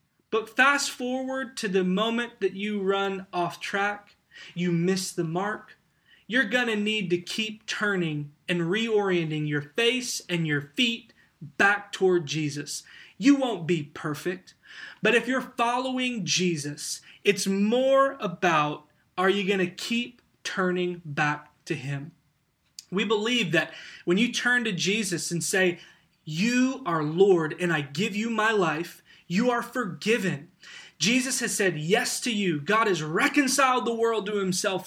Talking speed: 150 wpm